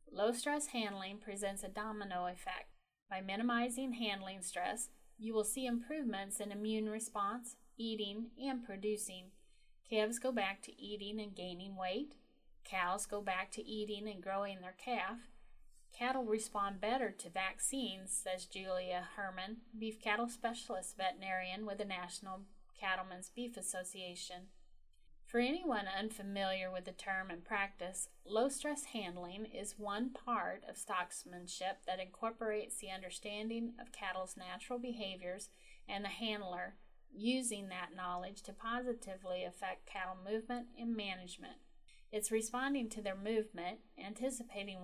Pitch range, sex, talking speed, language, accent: 185-230 Hz, female, 130 wpm, English, American